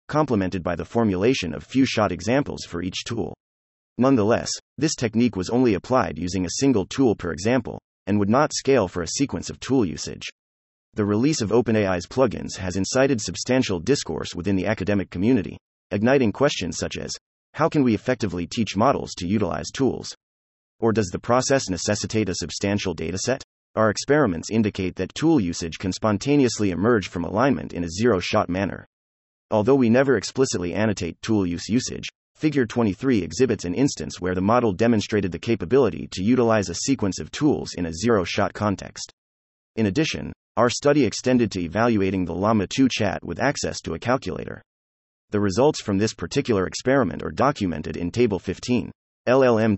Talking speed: 165 wpm